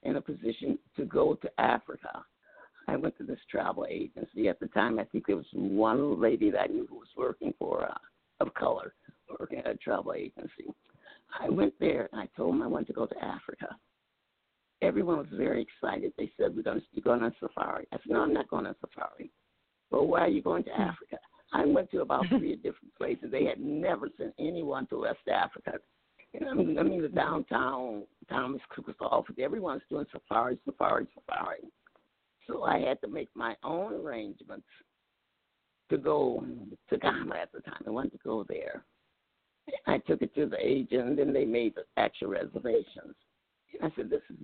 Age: 60-79